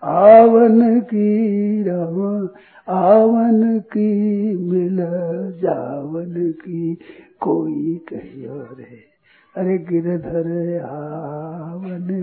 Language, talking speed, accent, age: Hindi, 70 wpm, native, 60-79